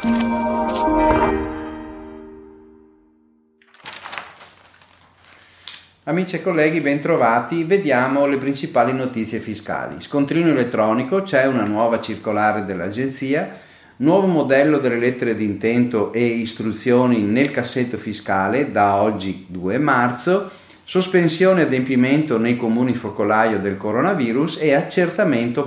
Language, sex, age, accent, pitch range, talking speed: Italian, male, 40-59, native, 105-140 Hz, 95 wpm